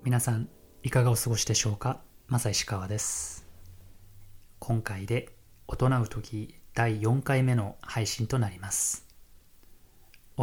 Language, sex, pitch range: Japanese, male, 95-120 Hz